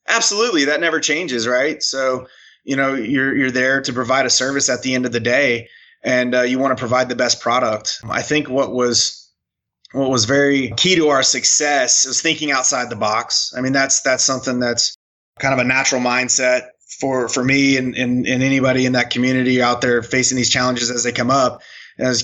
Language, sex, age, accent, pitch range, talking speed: English, male, 20-39, American, 125-140 Hz, 210 wpm